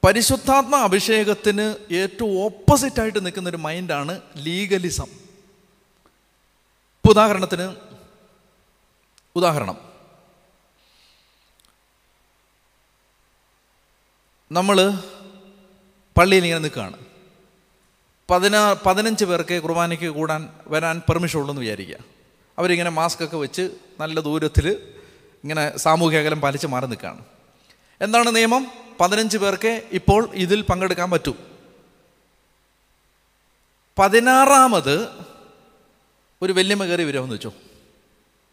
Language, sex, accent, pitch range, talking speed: Malayalam, male, native, 155-210 Hz, 80 wpm